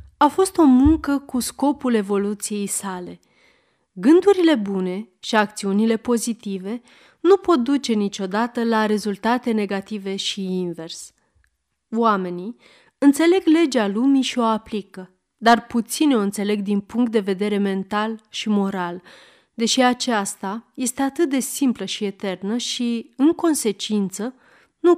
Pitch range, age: 200-260 Hz, 30-49